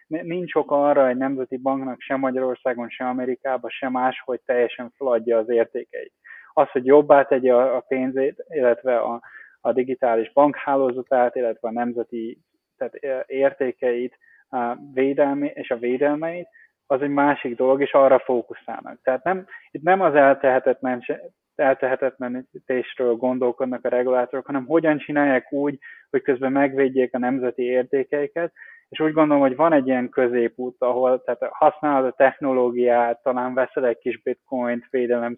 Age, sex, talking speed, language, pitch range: 20-39, male, 140 wpm, Hungarian, 125-140 Hz